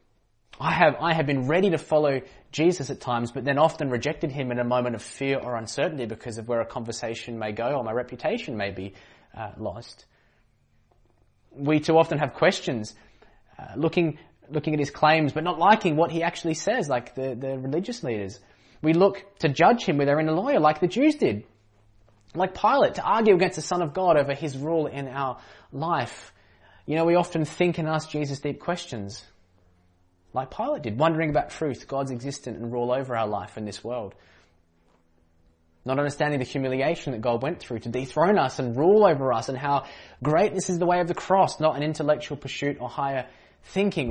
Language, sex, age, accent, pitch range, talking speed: English, male, 20-39, Australian, 115-160 Hz, 200 wpm